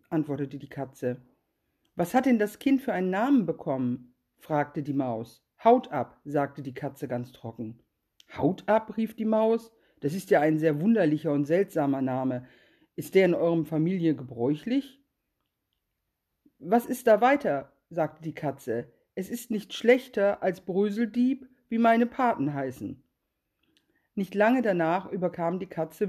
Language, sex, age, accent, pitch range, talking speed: German, female, 50-69, German, 155-230 Hz, 150 wpm